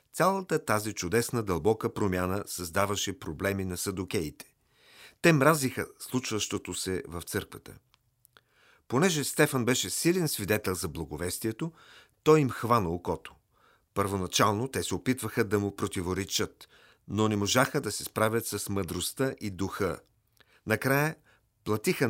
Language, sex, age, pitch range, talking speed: Bulgarian, male, 40-59, 95-130 Hz, 120 wpm